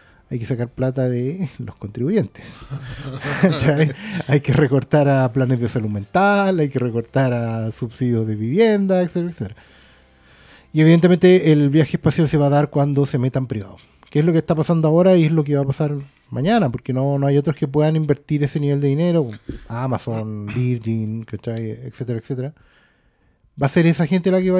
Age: 30-49